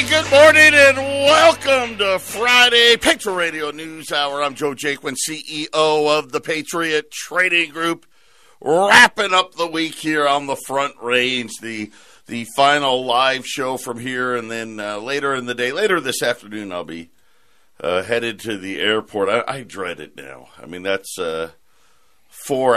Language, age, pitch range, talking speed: English, 50-69, 115-160 Hz, 165 wpm